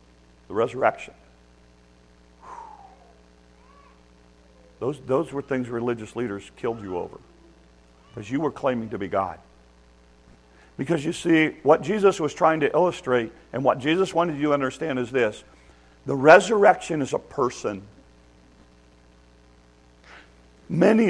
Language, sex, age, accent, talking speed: English, male, 50-69, American, 120 wpm